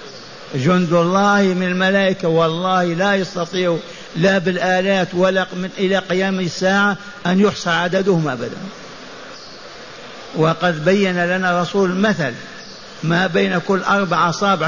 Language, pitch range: Arabic, 170-195 Hz